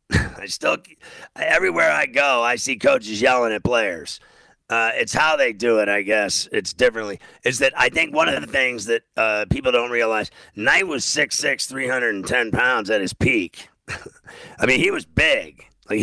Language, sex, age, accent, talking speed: English, male, 50-69, American, 180 wpm